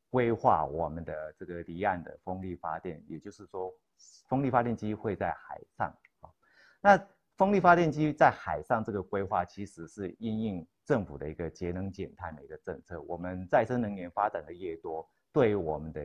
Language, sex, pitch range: Chinese, male, 85-115 Hz